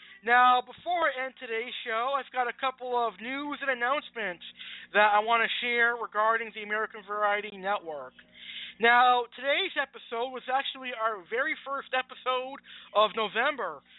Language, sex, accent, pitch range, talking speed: English, male, American, 215-265 Hz, 150 wpm